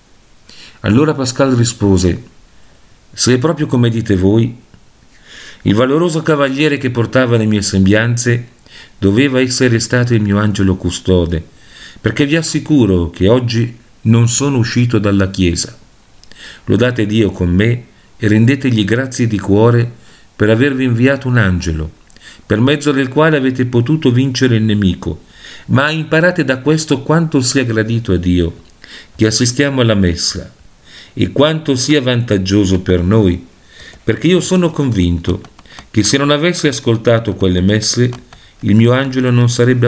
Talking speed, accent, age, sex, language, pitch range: 140 wpm, native, 50-69, male, Italian, 100-130 Hz